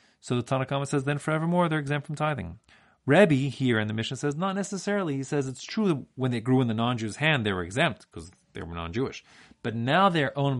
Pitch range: 105-155 Hz